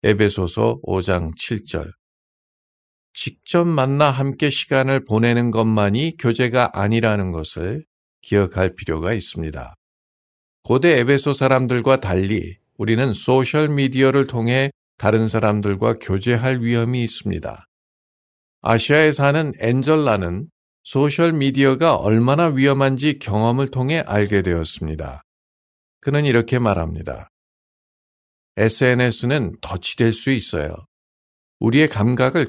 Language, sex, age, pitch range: Korean, male, 50-69, 105-140 Hz